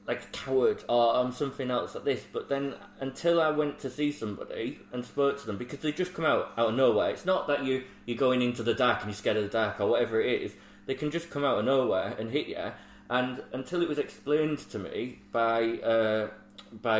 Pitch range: 110-135 Hz